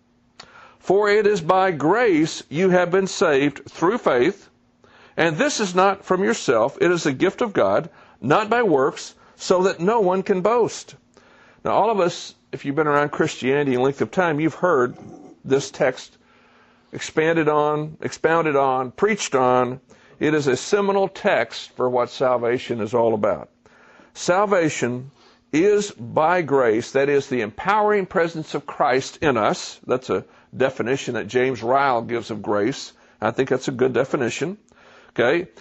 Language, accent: English, American